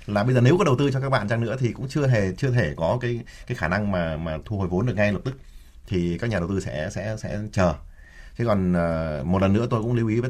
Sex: male